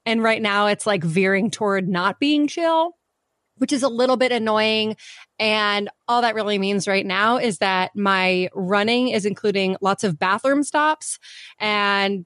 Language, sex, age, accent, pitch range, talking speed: English, female, 20-39, American, 195-240 Hz, 165 wpm